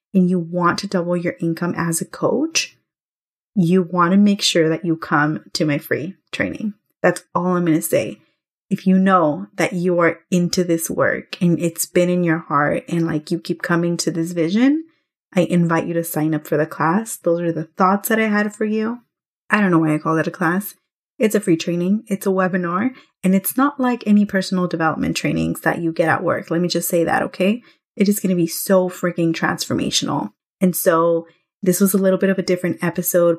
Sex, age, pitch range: female, 20-39, 165-190 Hz